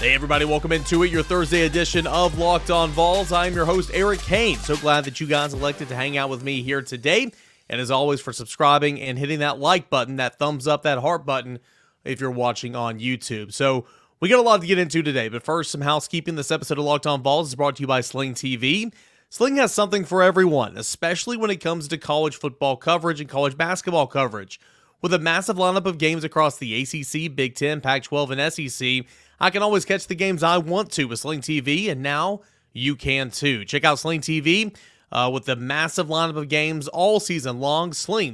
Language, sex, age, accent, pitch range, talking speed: English, male, 30-49, American, 135-170 Hz, 220 wpm